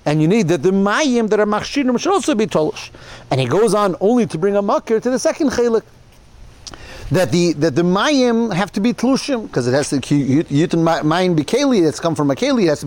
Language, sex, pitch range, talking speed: English, male, 150-205 Hz, 245 wpm